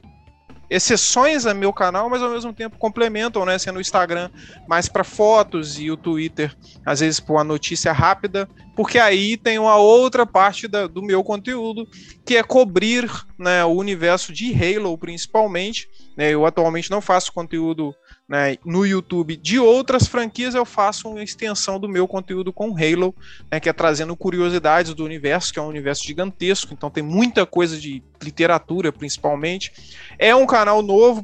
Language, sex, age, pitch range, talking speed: Portuguese, male, 20-39, 160-215 Hz, 165 wpm